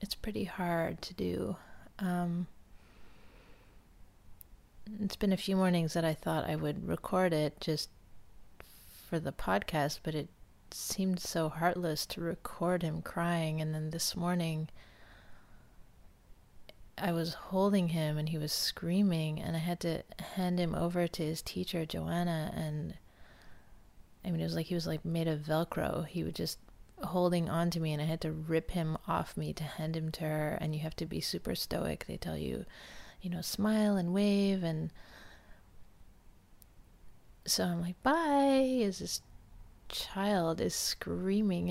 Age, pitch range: 30-49, 115-185 Hz